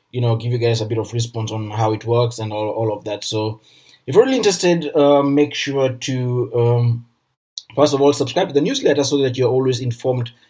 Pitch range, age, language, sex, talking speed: 120-140 Hz, 20-39, English, male, 230 wpm